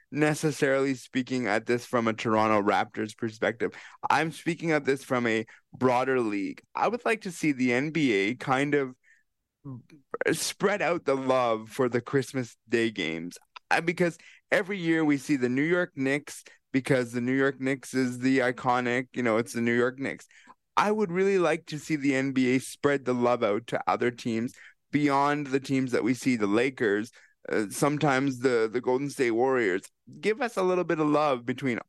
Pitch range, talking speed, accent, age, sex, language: 120-150 Hz, 180 wpm, American, 20-39, male, English